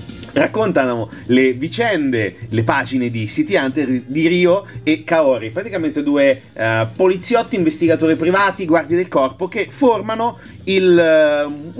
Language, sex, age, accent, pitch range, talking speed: Italian, male, 30-49, native, 130-215 Hz, 125 wpm